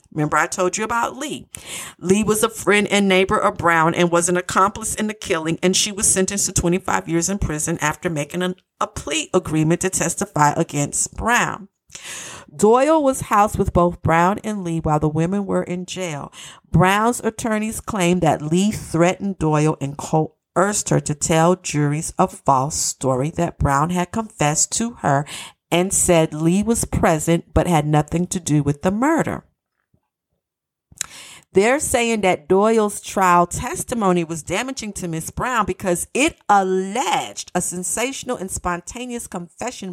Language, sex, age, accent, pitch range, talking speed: English, female, 50-69, American, 160-205 Hz, 160 wpm